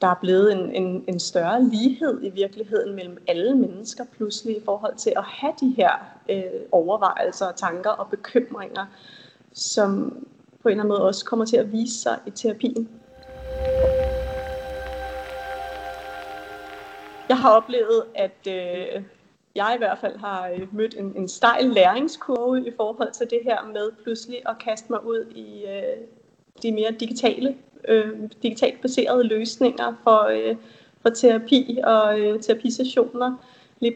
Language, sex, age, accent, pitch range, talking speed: Danish, female, 30-49, native, 195-245 Hz, 140 wpm